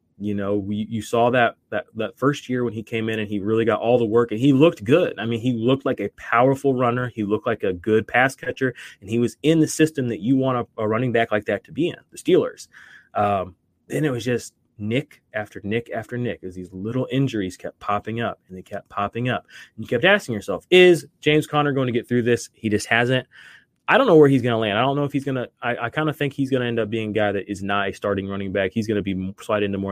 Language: English